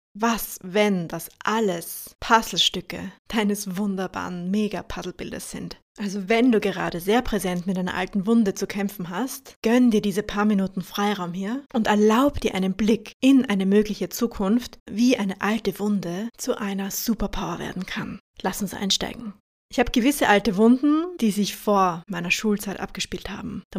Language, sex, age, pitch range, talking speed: German, female, 20-39, 190-230 Hz, 160 wpm